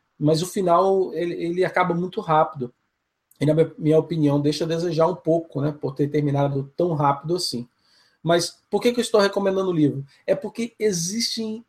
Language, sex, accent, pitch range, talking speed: Portuguese, male, Brazilian, 145-180 Hz, 185 wpm